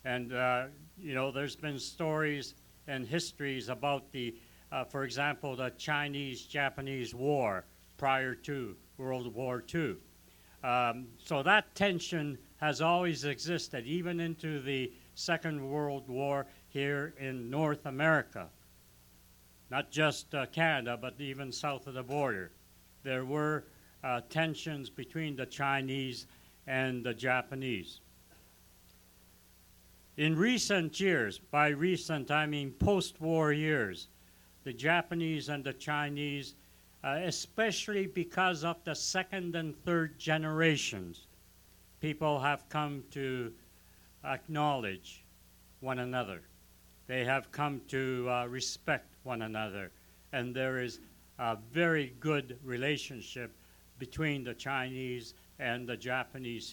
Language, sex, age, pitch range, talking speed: English, male, 60-79, 120-150 Hz, 115 wpm